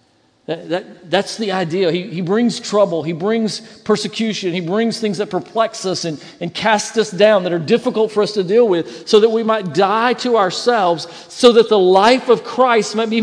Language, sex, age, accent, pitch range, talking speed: English, male, 50-69, American, 205-260 Hz, 200 wpm